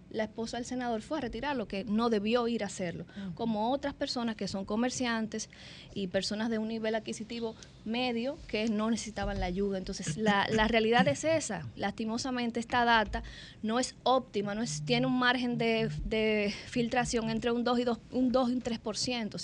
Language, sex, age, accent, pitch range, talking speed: Spanish, female, 20-39, American, 210-245 Hz, 190 wpm